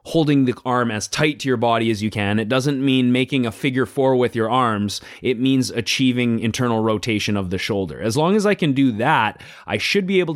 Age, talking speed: 30-49, 230 wpm